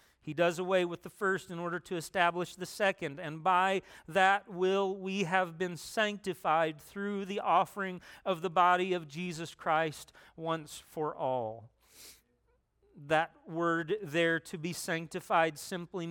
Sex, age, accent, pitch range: male, 40-59, American, 155-185 Hz